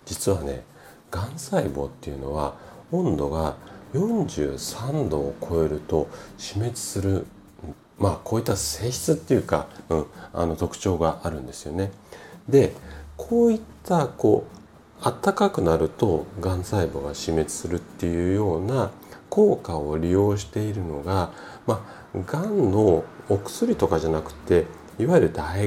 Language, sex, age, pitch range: Japanese, male, 40-59, 75-120 Hz